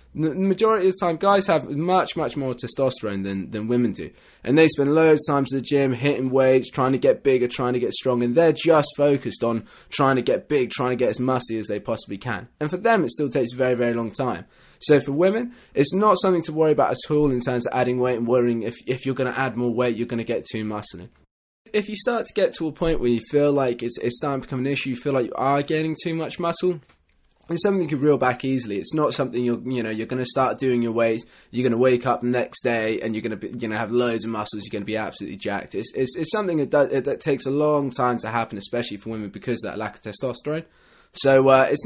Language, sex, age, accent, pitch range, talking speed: English, male, 20-39, British, 115-150 Hz, 275 wpm